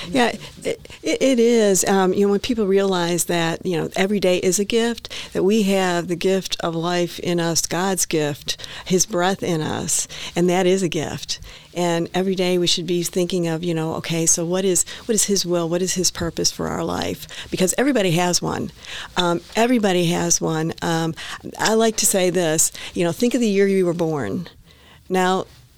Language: English